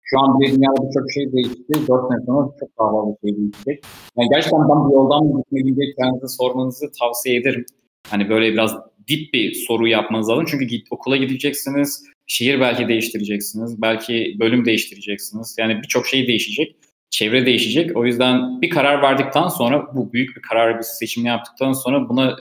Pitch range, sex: 105-130 Hz, male